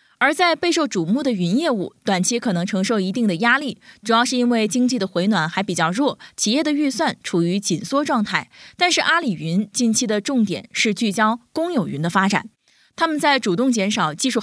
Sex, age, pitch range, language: female, 20-39, 190-260 Hz, Chinese